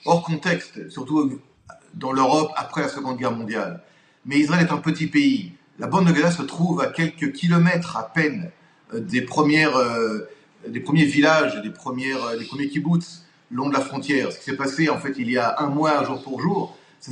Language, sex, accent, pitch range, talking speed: French, male, French, 135-170 Hz, 205 wpm